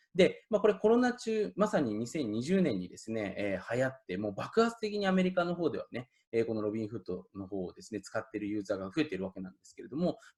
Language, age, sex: Japanese, 20-39, male